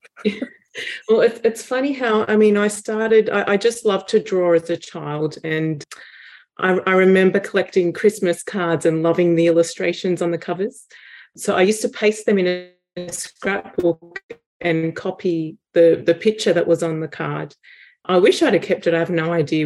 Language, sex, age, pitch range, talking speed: English, female, 30-49, 165-200 Hz, 185 wpm